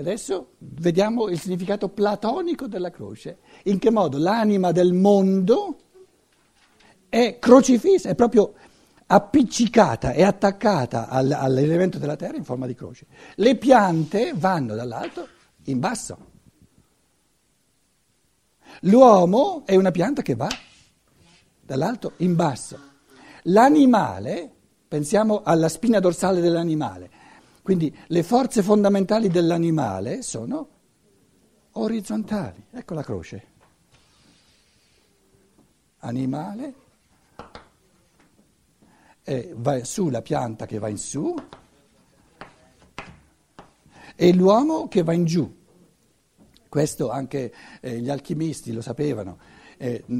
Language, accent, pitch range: Italian, native, 140-210 Hz